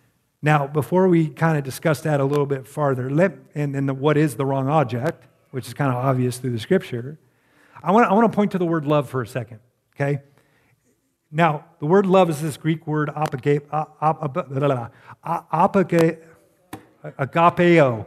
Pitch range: 135-175 Hz